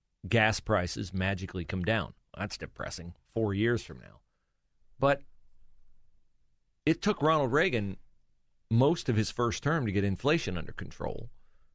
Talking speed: 135 wpm